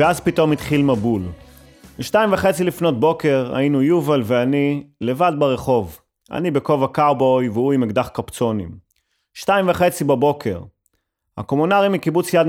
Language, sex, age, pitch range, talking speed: Hebrew, male, 30-49, 115-150 Hz, 125 wpm